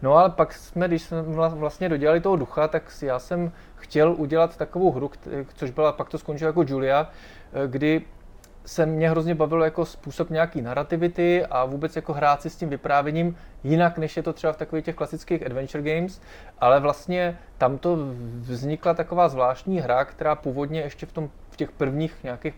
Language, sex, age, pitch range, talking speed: Czech, male, 20-39, 135-160 Hz, 180 wpm